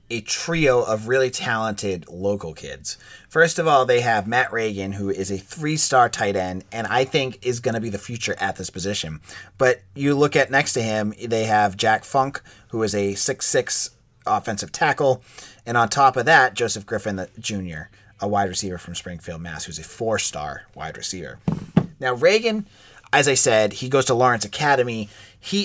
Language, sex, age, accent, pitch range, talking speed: English, male, 30-49, American, 100-130 Hz, 185 wpm